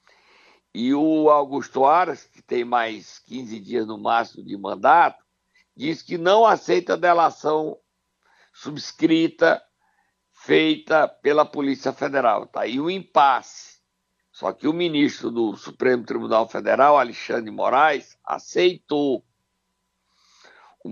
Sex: male